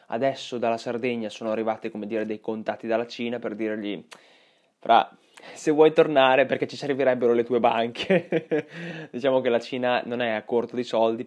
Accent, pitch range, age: native, 110-125 Hz, 20-39